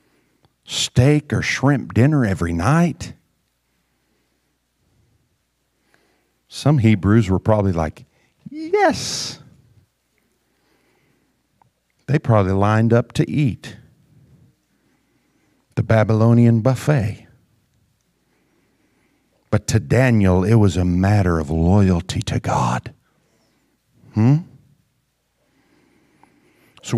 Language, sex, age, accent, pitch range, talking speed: English, male, 50-69, American, 110-140 Hz, 75 wpm